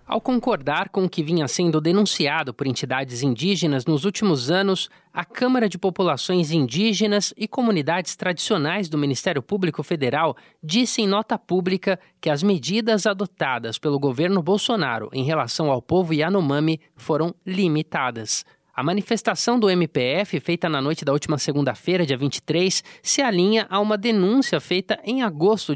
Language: Portuguese